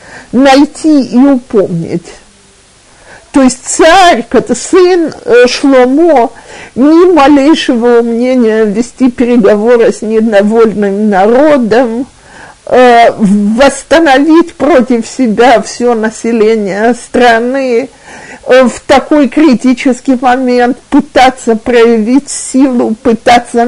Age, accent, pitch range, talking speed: 50-69, native, 230-285 Hz, 80 wpm